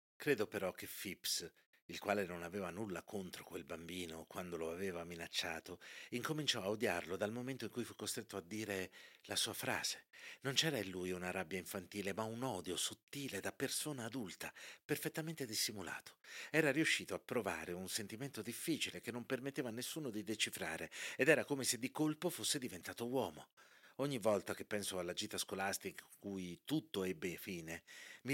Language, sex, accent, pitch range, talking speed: Italian, male, native, 95-130 Hz, 175 wpm